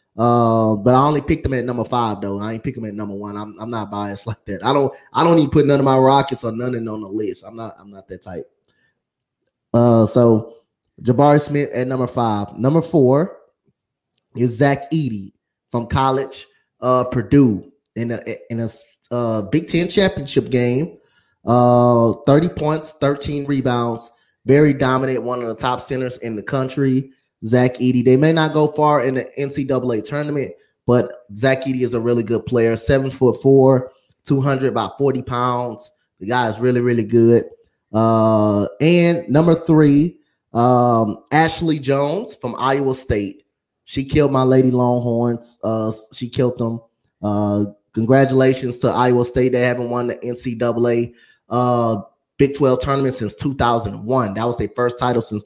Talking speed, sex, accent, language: 175 wpm, male, American, English